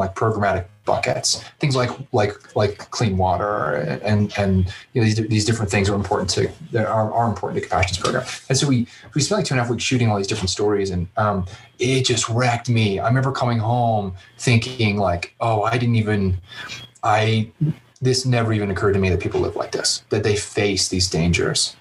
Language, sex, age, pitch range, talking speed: English, male, 30-49, 100-120 Hz, 210 wpm